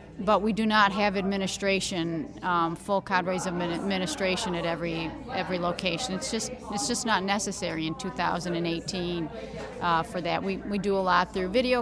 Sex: female